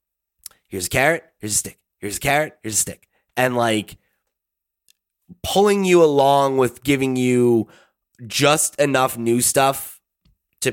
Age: 20-39